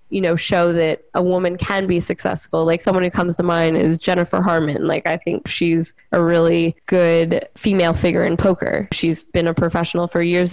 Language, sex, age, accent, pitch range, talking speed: English, female, 10-29, American, 170-195 Hz, 200 wpm